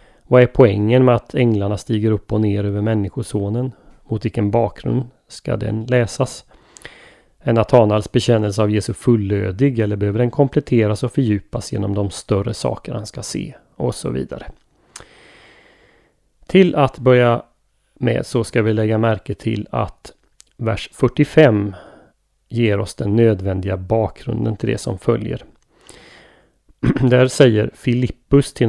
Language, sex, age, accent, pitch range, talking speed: Swedish, male, 30-49, native, 105-125 Hz, 140 wpm